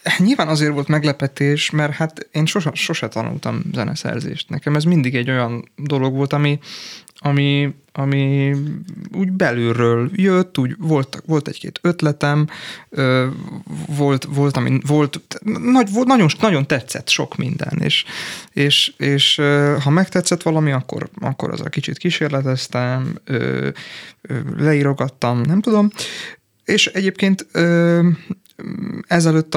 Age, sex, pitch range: 30-49, male, 135-170 Hz